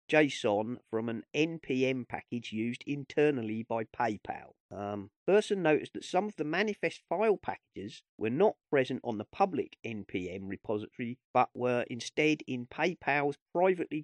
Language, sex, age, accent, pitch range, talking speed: English, male, 40-59, British, 110-145 Hz, 140 wpm